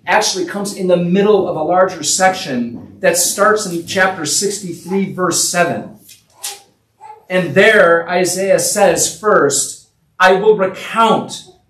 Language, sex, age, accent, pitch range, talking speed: English, male, 40-59, American, 130-190 Hz, 125 wpm